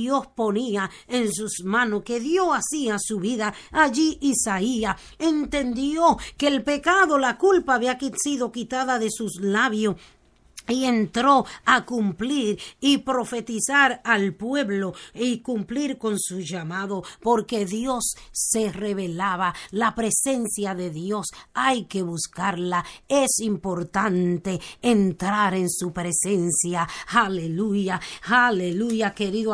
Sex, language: female, Spanish